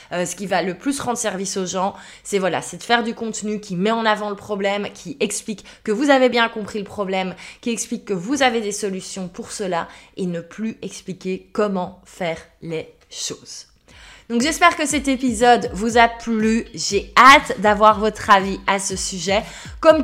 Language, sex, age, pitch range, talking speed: French, female, 20-39, 195-240 Hz, 200 wpm